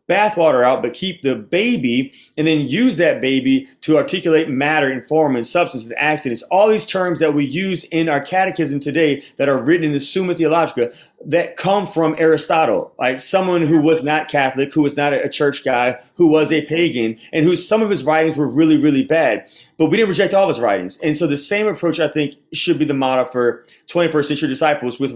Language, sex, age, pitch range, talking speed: English, male, 30-49, 135-170 Hz, 215 wpm